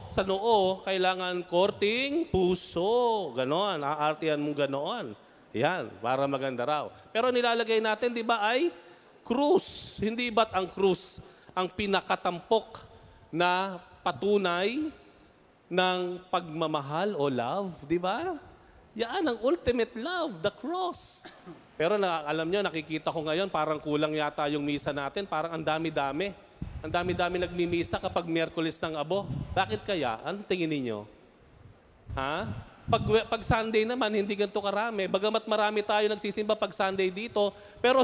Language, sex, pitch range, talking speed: Filipino, male, 160-220 Hz, 130 wpm